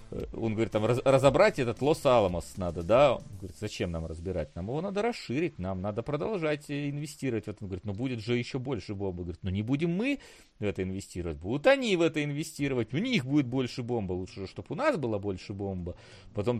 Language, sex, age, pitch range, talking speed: Russian, male, 40-59, 95-130 Hz, 205 wpm